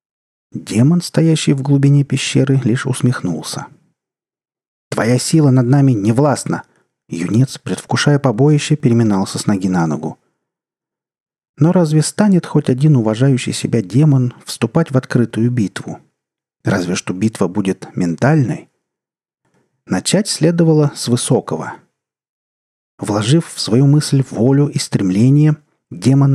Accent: native